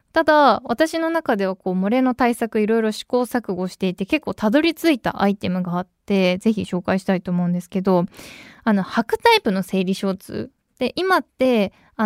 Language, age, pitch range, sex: Japanese, 20-39, 185-260 Hz, female